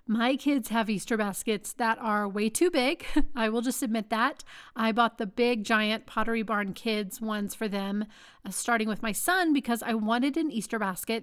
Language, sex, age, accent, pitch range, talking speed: English, female, 30-49, American, 215-255 Hz, 200 wpm